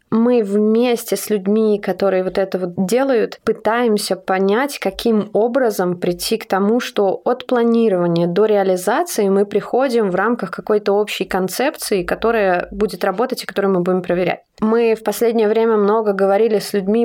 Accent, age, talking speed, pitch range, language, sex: native, 20-39, 155 wpm, 190-220 Hz, Russian, female